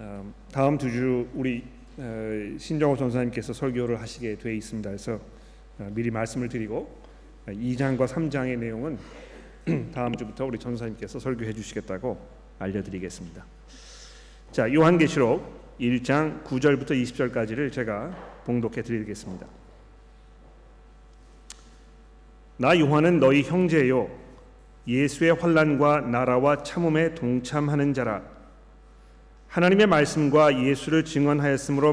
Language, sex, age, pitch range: Korean, male, 40-59, 120-150 Hz